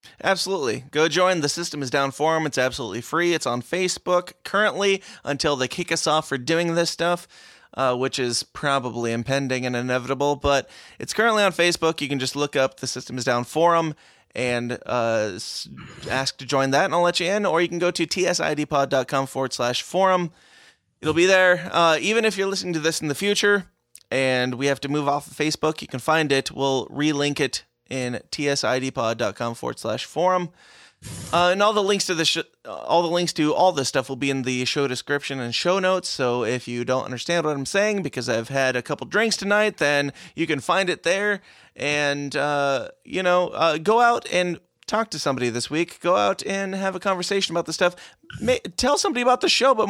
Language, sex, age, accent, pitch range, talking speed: English, male, 20-39, American, 135-185 Hz, 205 wpm